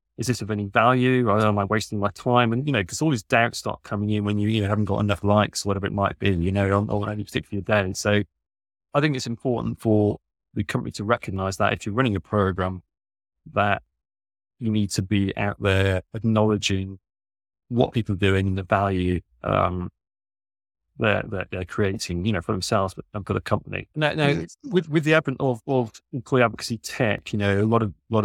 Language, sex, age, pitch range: English, male, 30-49, 100-115 Hz